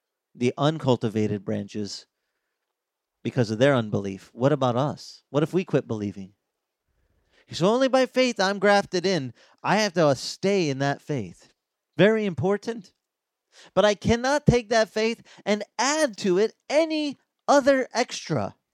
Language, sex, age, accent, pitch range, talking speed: English, male, 40-59, American, 125-205 Hz, 140 wpm